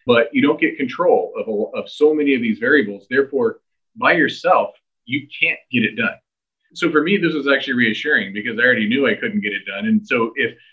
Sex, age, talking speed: male, 30-49, 225 wpm